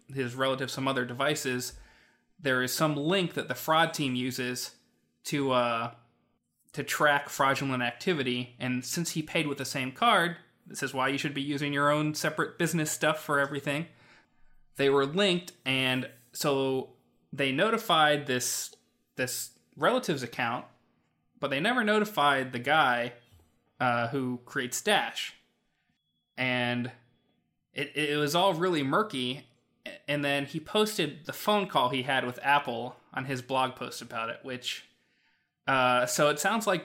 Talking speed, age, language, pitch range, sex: 155 wpm, 20-39, English, 125-155 Hz, male